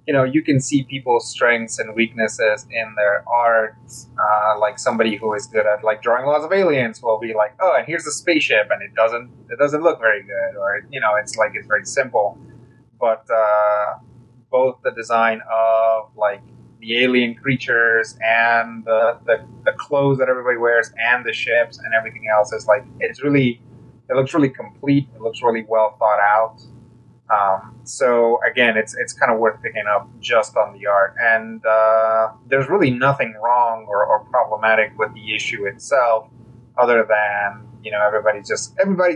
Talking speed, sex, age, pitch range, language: 185 wpm, male, 20-39, 110-125 Hz, English